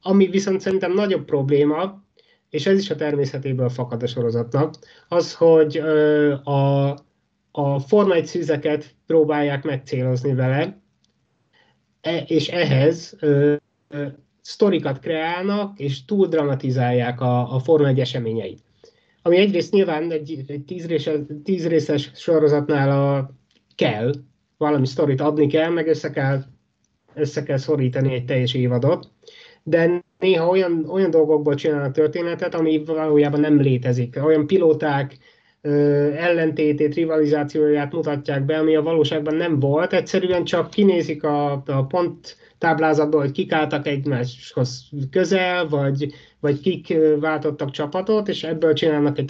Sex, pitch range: male, 140-170 Hz